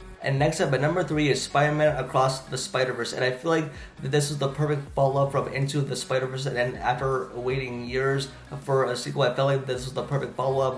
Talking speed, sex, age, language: 225 wpm, male, 20-39, English